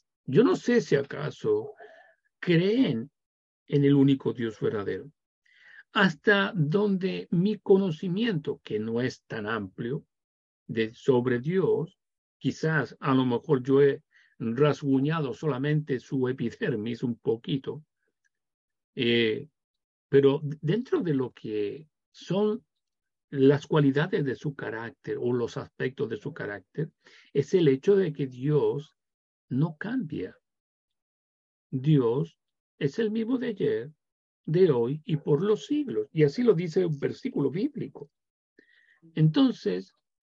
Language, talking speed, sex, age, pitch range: Spanish, 120 wpm, male, 50-69, 135-190 Hz